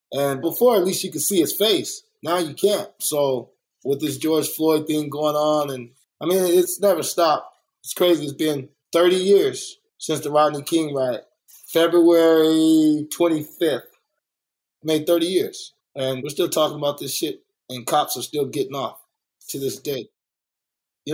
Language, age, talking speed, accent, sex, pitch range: English, 20-39, 165 wpm, American, male, 145-170 Hz